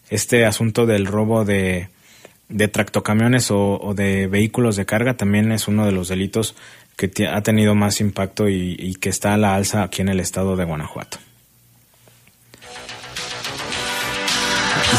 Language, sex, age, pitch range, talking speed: Spanish, male, 30-49, 105-125 Hz, 155 wpm